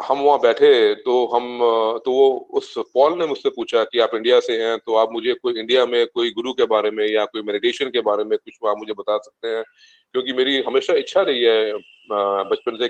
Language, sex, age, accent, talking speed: Hindi, male, 30-49, native, 225 wpm